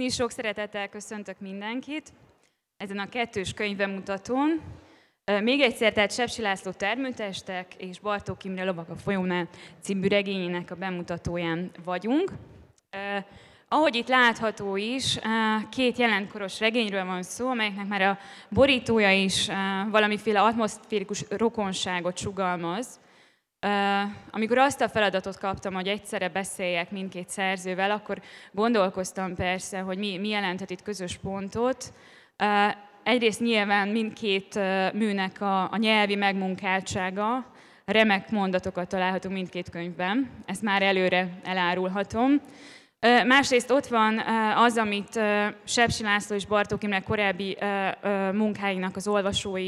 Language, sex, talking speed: Hungarian, female, 110 wpm